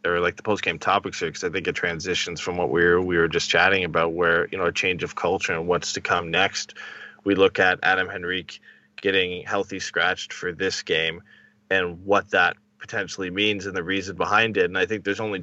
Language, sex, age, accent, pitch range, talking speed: English, male, 20-39, American, 90-145 Hz, 220 wpm